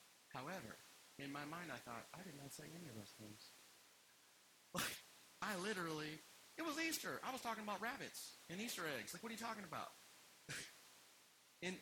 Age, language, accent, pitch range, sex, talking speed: 40-59, English, American, 145-210 Hz, male, 180 wpm